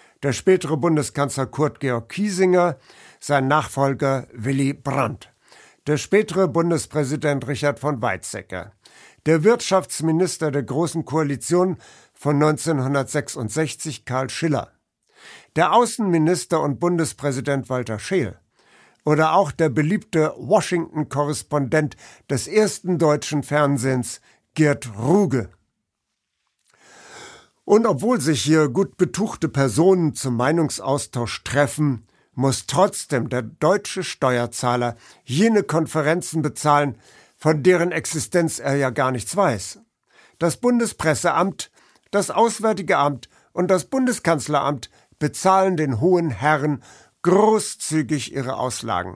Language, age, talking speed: German, 60-79, 100 wpm